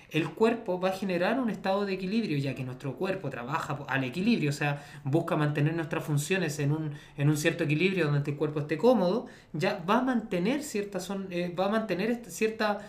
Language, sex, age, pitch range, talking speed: Spanish, male, 20-39, 145-190 Hz, 175 wpm